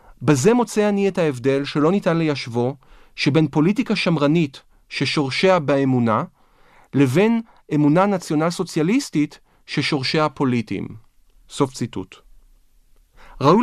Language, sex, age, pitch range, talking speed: Hebrew, male, 40-59, 140-185 Hz, 95 wpm